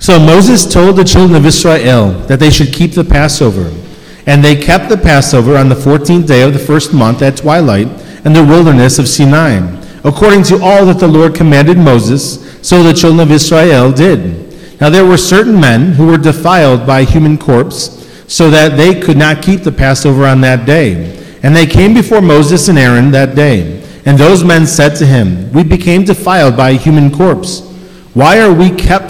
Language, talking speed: English, 200 wpm